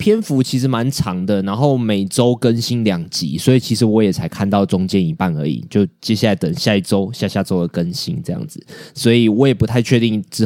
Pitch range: 100-130 Hz